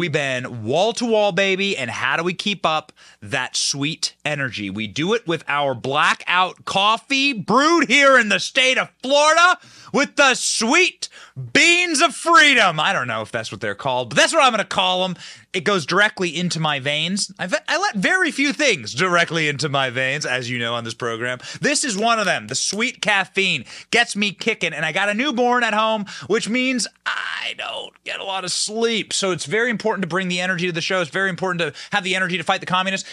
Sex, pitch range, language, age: male, 145-225 Hz, English, 30-49